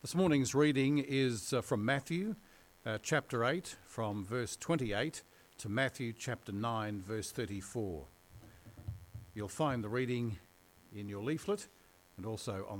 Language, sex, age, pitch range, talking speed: English, male, 60-79, 95-145 Hz, 135 wpm